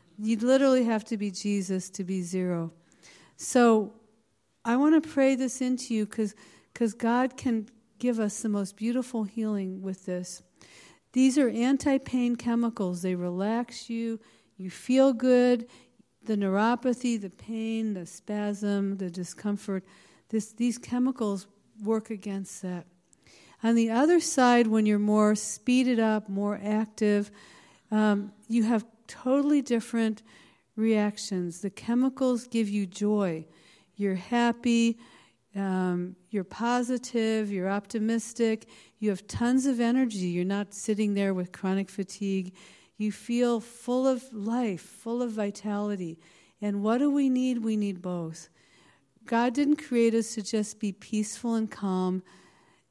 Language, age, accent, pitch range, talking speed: English, 50-69, American, 200-240 Hz, 140 wpm